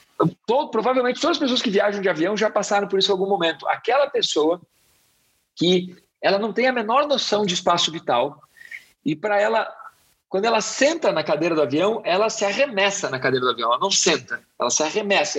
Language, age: Portuguese, 40-59